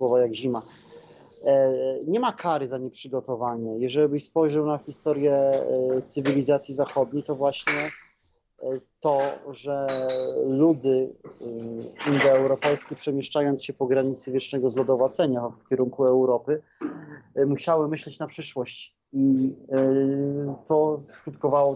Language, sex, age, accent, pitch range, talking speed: Polish, male, 30-49, native, 130-145 Hz, 100 wpm